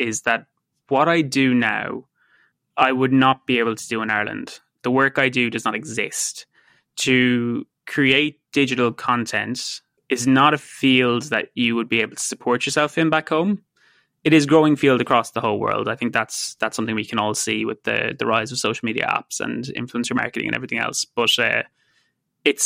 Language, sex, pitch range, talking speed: French, male, 115-135 Hz, 200 wpm